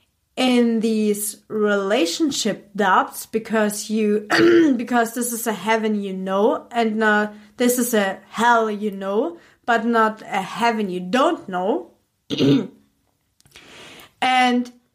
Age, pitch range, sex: 30-49, 205-250 Hz, female